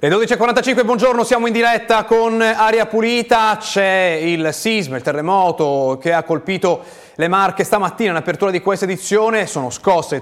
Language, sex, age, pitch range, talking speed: Italian, male, 30-49, 130-175 Hz, 165 wpm